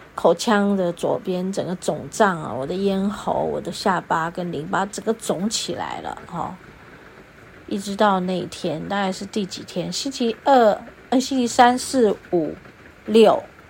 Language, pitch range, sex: Chinese, 170-225 Hz, female